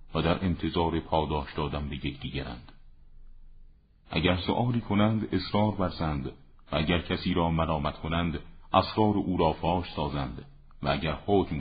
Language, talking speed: Persian, 135 wpm